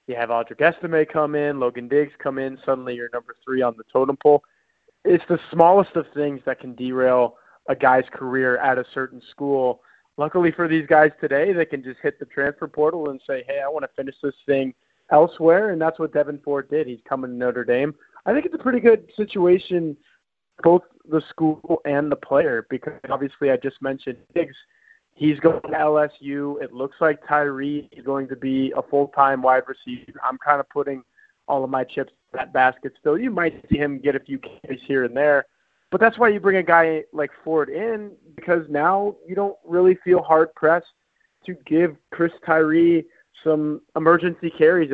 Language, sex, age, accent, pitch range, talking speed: English, male, 20-39, American, 135-165 Hz, 200 wpm